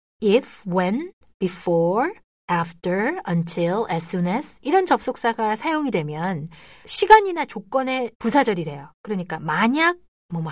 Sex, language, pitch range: female, Korean, 170-235 Hz